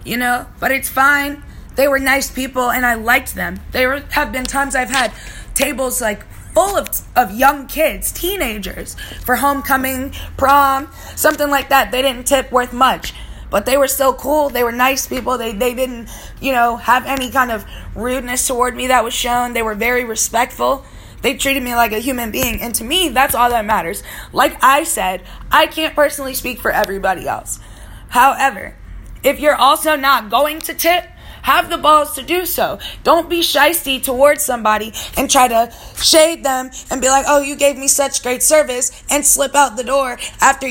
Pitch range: 250-290 Hz